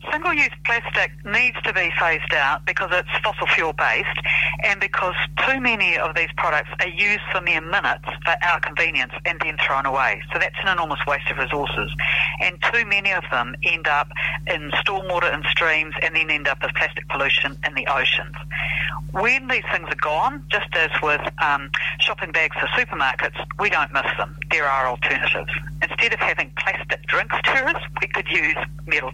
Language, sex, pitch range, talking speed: English, female, 150-190 Hz, 185 wpm